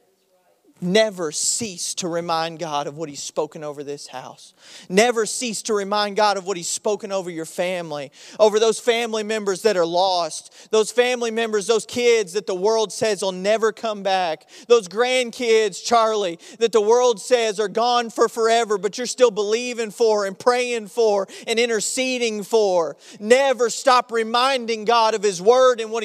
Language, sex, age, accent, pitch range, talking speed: English, male, 40-59, American, 195-250 Hz, 175 wpm